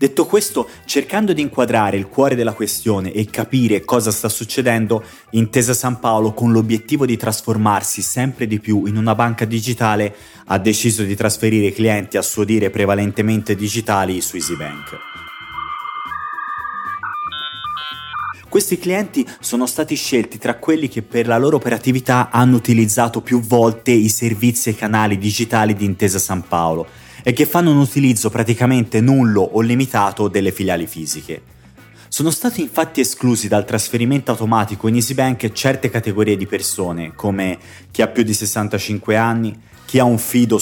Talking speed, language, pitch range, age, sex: 150 wpm, Italian, 105-125 Hz, 30-49, male